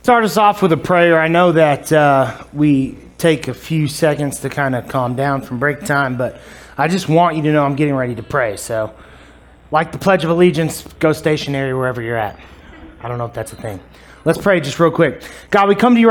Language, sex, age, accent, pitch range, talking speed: English, male, 30-49, American, 135-180 Hz, 235 wpm